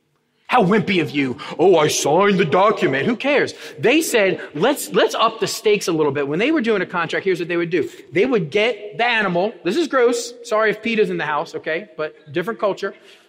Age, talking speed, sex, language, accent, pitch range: 30-49, 225 wpm, male, English, American, 160-225 Hz